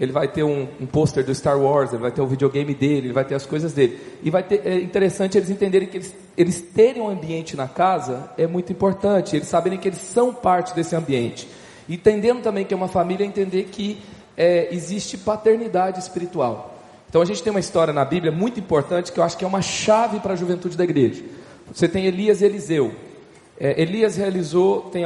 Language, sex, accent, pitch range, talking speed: Portuguese, male, Brazilian, 170-205 Hz, 215 wpm